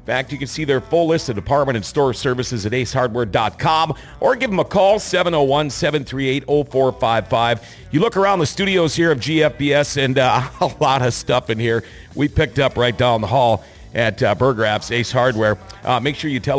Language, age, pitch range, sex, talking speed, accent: English, 50-69, 110-145 Hz, male, 190 wpm, American